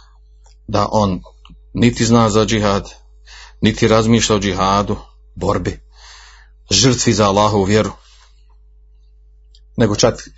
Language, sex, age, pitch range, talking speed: Croatian, male, 40-59, 95-115 Hz, 100 wpm